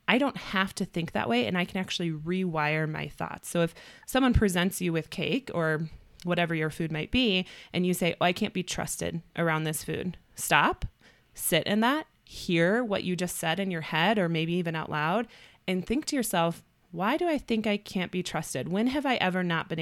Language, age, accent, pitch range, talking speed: English, 20-39, American, 160-200 Hz, 220 wpm